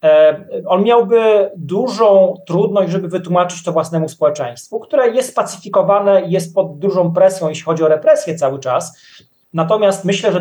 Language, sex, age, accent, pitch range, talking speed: Polish, male, 30-49, native, 160-195 Hz, 145 wpm